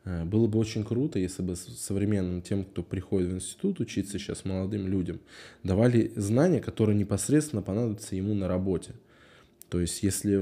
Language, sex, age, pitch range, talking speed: Russian, male, 20-39, 95-110 Hz, 155 wpm